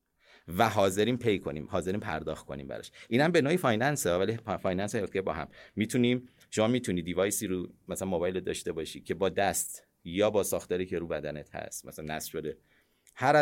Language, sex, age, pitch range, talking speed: Persian, male, 30-49, 90-120 Hz, 175 wpm